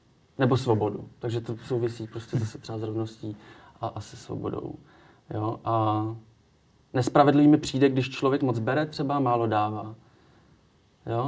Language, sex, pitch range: Czech, male, 115-130 Hz